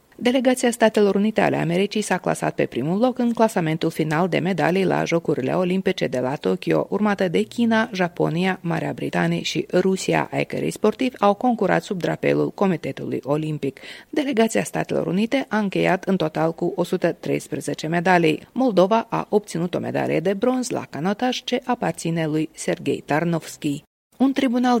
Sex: female